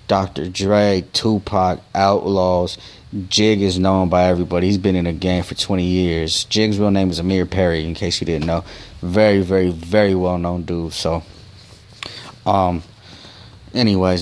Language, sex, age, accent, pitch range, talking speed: English, male, 20-39, American, 90-105 Hz, 155 wpm